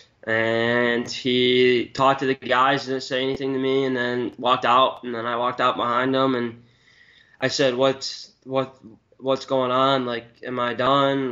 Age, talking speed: 10-29, 180 wpm